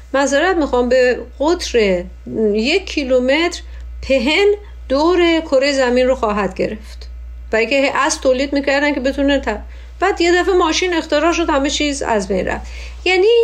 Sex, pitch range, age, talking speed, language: female, 220-305 Hz, 50-69, 145 wpm, Persian